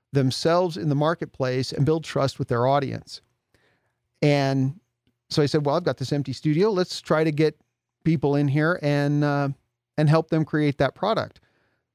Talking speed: 175 wpm